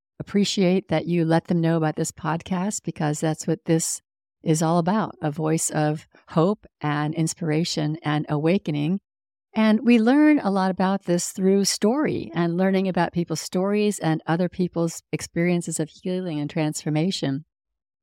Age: 50-69